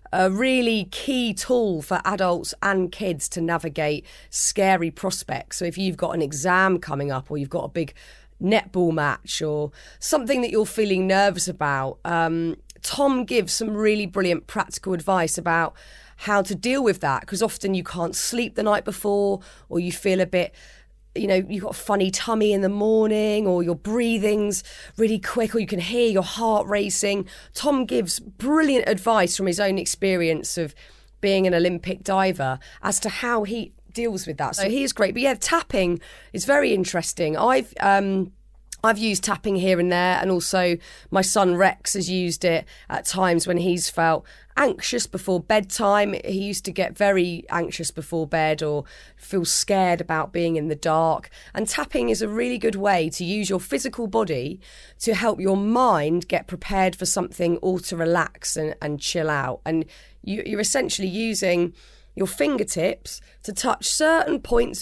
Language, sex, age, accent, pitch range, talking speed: English, female, 30-49, British, 175-215 Hz, 175 wpm